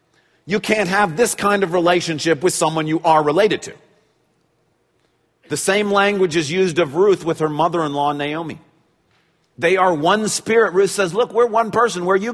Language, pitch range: English, 145-205 Hz